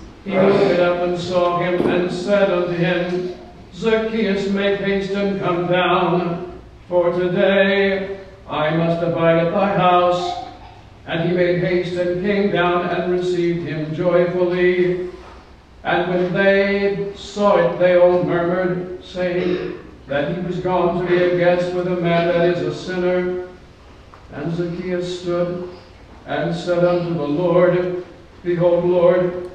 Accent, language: American, English